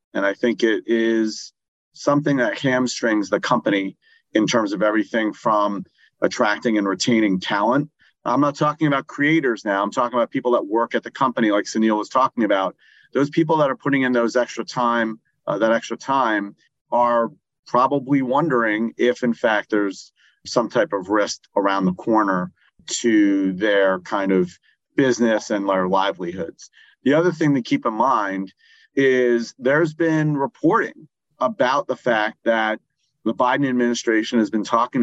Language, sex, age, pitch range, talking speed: English, male, 40-59, 110-140 Hz, 165 wpm